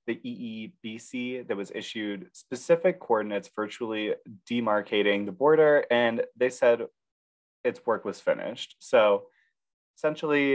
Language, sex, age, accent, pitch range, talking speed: English, male, 20-39, American, 105-155 Hz, 115 wpm